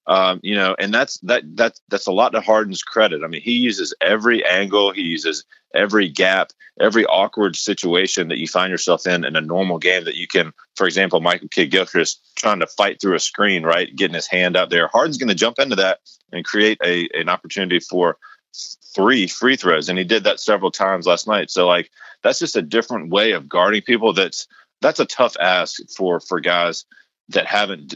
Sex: male